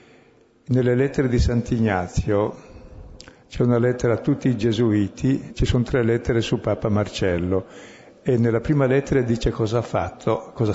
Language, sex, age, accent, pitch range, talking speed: Italian, male, 60-79, native, 105-125 Hz, 150 wpm